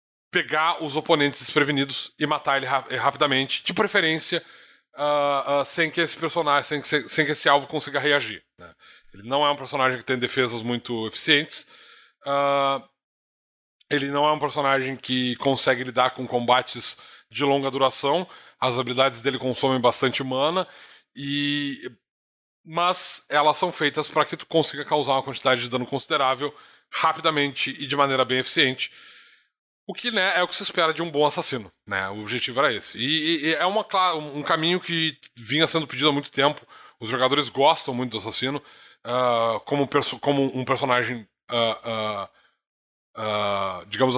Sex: male